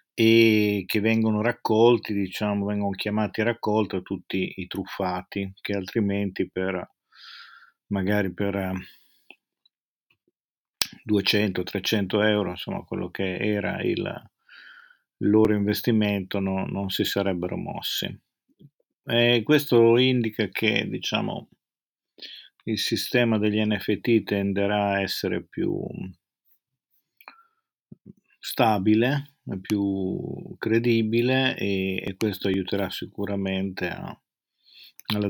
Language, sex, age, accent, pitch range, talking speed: Italian, male, 50-69, native, 100-115 Hz, 90 wpm